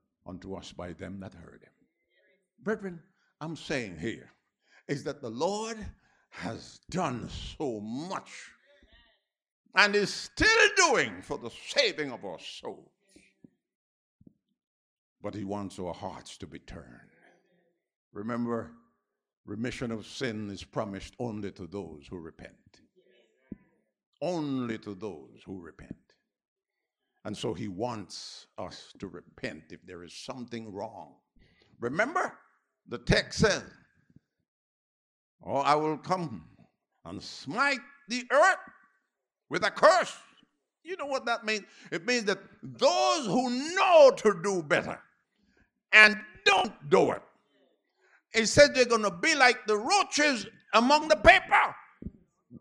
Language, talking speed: English, 125 wpm